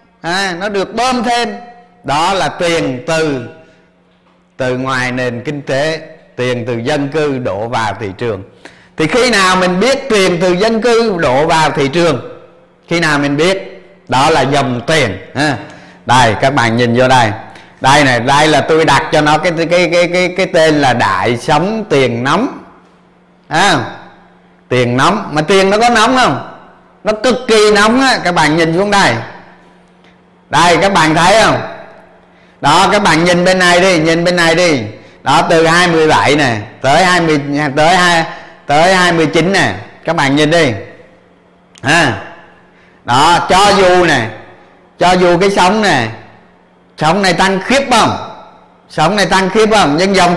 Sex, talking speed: male, 165 wpm